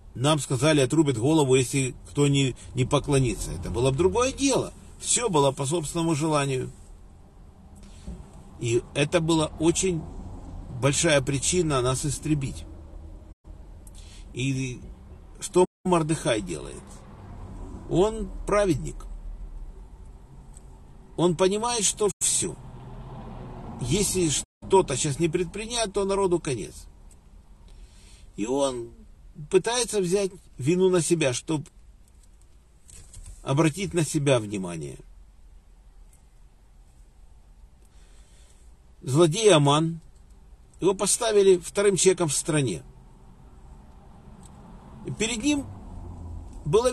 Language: Russian